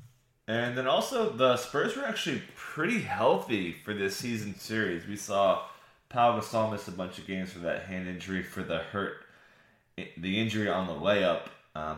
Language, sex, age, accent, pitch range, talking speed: English, male, 20-39, American, 90-115 Hz, 175 wpm